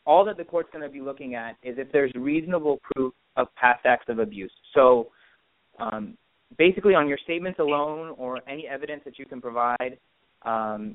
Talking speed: 185 wpm